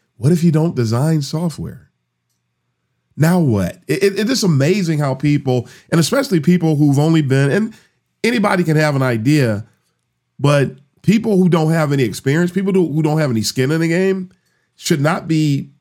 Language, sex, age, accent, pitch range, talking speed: English, male, 40-59, American, 120-160 Hz, 165 wpm